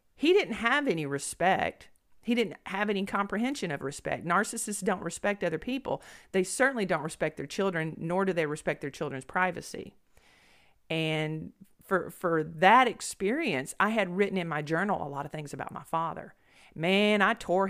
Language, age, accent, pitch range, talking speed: English, 40-59, American, 155-200 Hz, 175 wpm